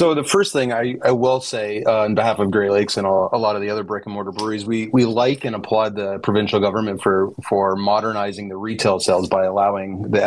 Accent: American